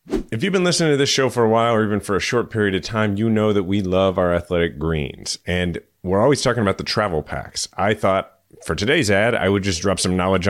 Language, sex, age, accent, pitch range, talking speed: English, male, 30-49, American, 90-120 Hz, 255 wpm